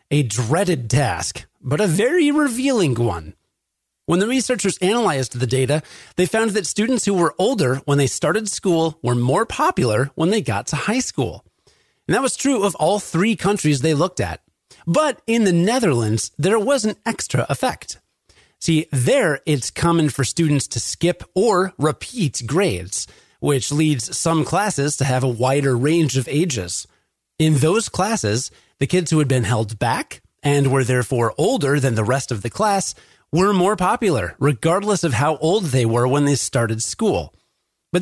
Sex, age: male, 30-49